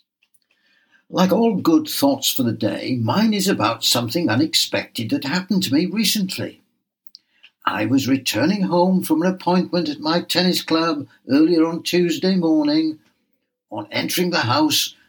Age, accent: 60-79, British